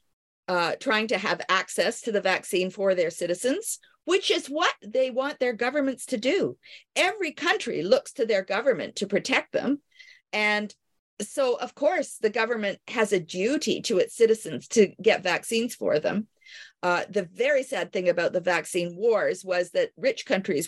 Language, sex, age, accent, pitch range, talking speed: English, female, 50-69, American, 190-275 Hz, 170 wpm